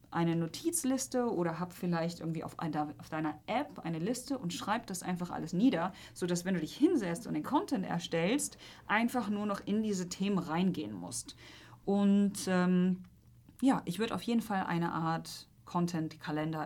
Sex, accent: female, German